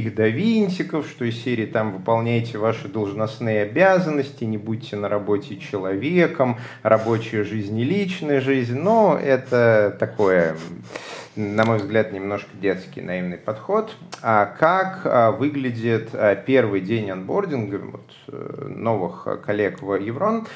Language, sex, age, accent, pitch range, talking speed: Russian, male, 30-49, native, 100-135 Hz, 115 wpm